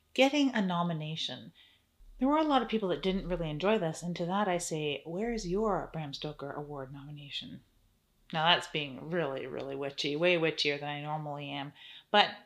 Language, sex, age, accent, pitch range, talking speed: English, female, 30-49, American, 155-195 Hz, 185 wpm